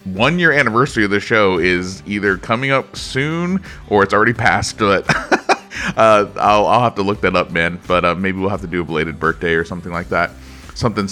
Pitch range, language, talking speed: 90-120 Hz, English, 215 wpm